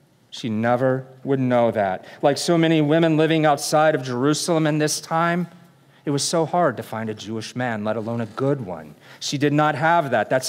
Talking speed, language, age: 205 wpm, English, 40-59